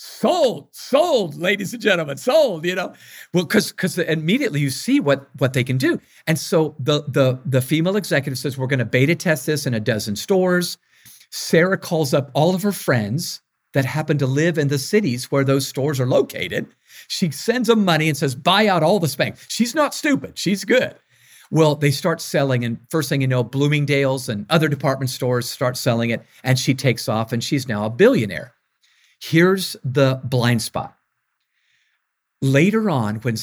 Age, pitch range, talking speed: 50-69, 130-180 Hz, 190 wpm